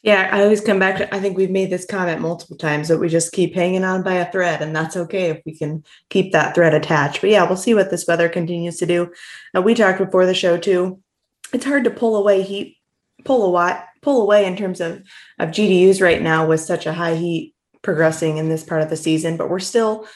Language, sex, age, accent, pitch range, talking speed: English, female, 20-39, American, 165-195 Hz, 245 wpm